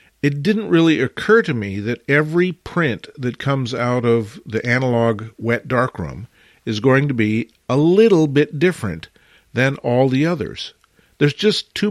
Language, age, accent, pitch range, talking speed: English, 50-69, American, 115-145 Hz, 160 wpm